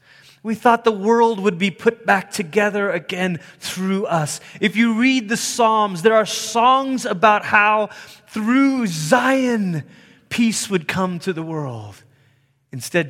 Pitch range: 140-205 Hz